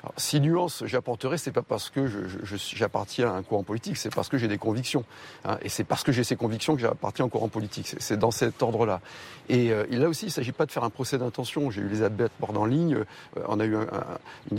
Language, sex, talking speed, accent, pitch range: French, male, 275 wpm, French, 115-155 Hz